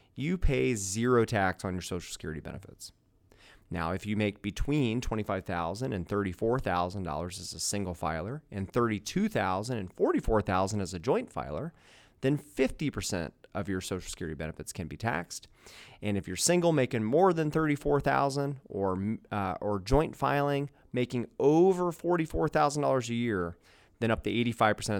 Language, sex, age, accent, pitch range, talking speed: English, male, 30-49, American, 95-130 Hz, 145 wpm